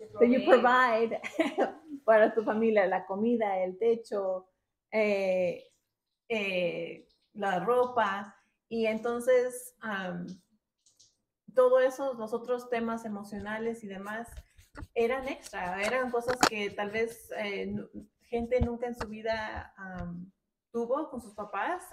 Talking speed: 115 wpm